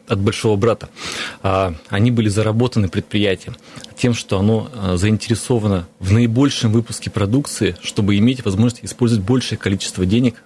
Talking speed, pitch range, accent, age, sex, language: 125 wpm, 95-115 Hz, native, 30-49, male, Russian